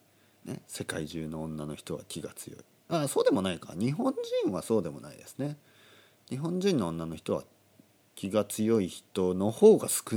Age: 40-59